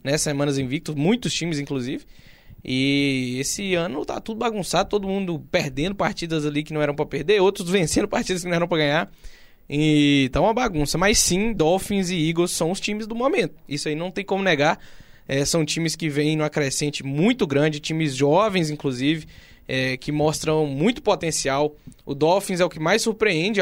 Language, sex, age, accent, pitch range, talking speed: Portuguese, male, 20-39, Brazilian, 150-185 Hz, 185 wpm